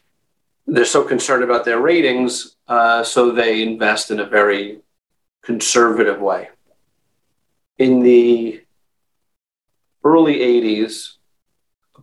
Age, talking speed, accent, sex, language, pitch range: 40-59, 100 wpm, American, male, English, 110-125 Hz